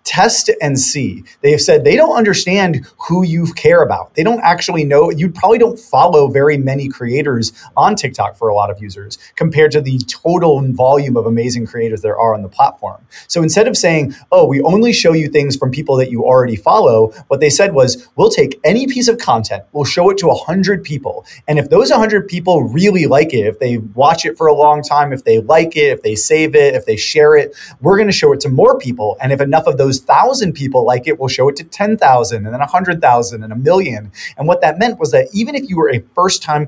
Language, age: English, 30-49